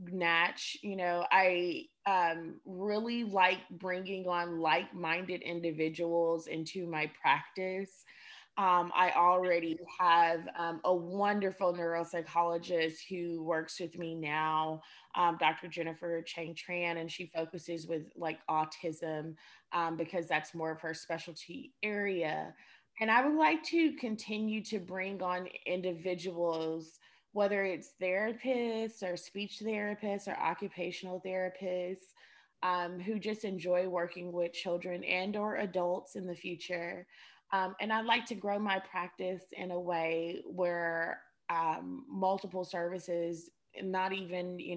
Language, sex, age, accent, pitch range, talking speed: English, female, 20-39, American, 165-190 Hz, 125 wpm